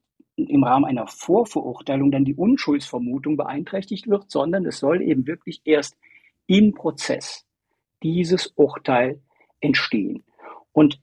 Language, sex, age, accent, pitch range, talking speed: German, male, 50-69, German, 145-200 Hz, 115 wpm